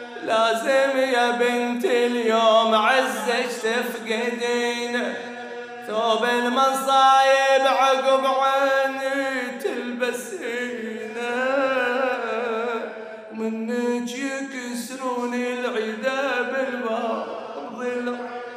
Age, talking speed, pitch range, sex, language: 30-49, 50 wpm, 240-270 Hz, male, Arabic